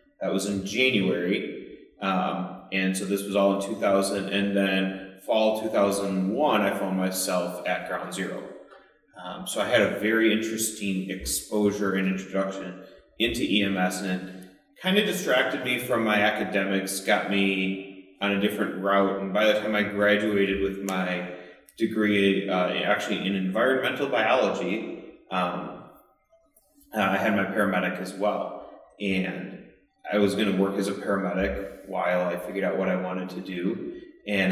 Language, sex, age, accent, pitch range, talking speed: English, male, 30-49, American, 95-105 Hz, 155 wpm